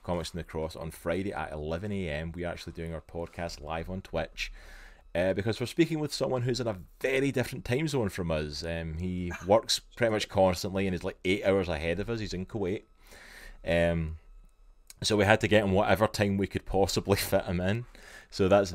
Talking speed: 215 wpm